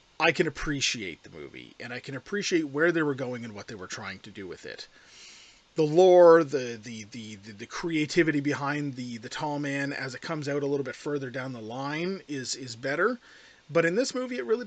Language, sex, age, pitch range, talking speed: English, male, 30-49, 125-185 Hz, 225 wpm